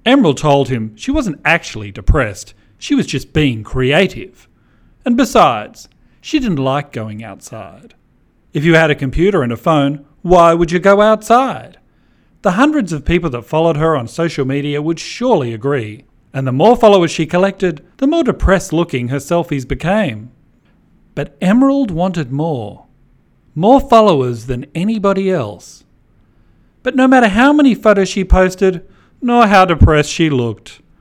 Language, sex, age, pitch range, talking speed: English, male, 40-59, 125-200 Hz, 155 wpm